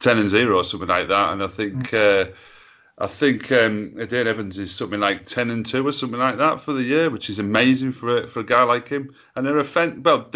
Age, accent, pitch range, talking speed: 30-49, British, 100-130 Hz, 250 wpm